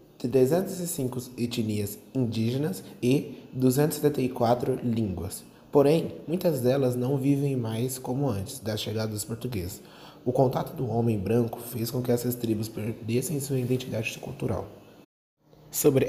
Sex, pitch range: male, 110-130 Hz